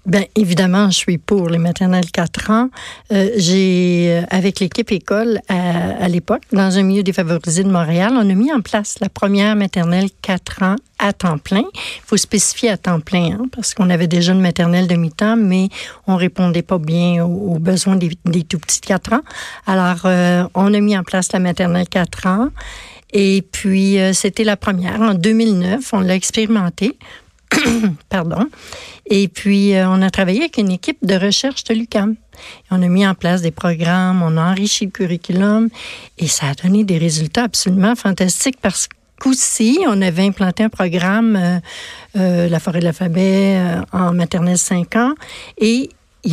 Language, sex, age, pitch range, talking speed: French, female, 60-79, 180-210 Hz, 185 wpm